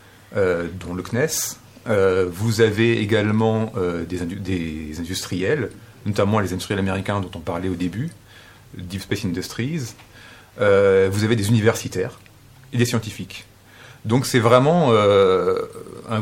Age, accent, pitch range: 40-59, French, 95-120 Hz